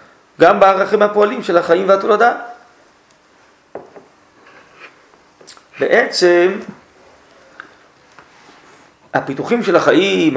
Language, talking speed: Hebrew, 60 wpm